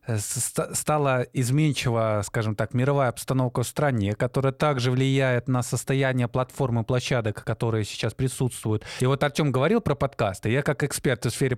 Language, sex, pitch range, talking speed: Russian, male, 115-145 Hz, 150 wpm